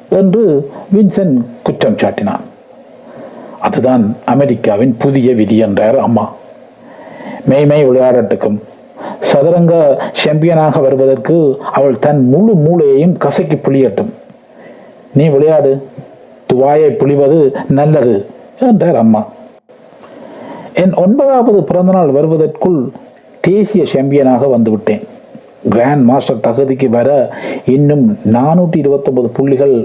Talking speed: 80 wpm